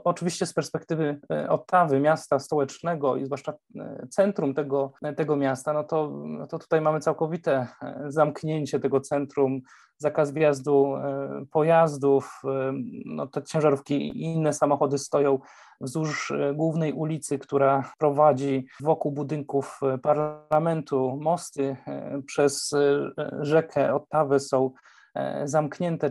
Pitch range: 140-155 Hz